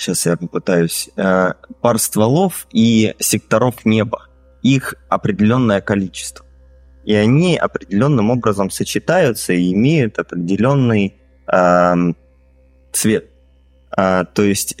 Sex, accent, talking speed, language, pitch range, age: male, native, 95 wpm, Russian, 65-105 Hz, 20-39